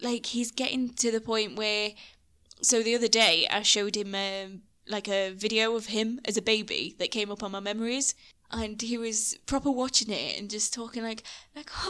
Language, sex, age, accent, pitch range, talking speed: English, female, 10-29, British, 210-250 Hz, 195 wpm